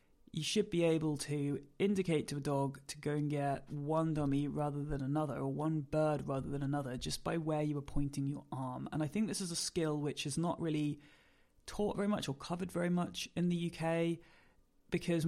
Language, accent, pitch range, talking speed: English, British, 140-160 Hz, 210 wpm